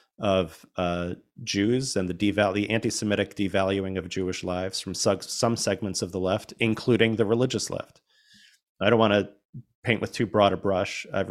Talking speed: 180 wpm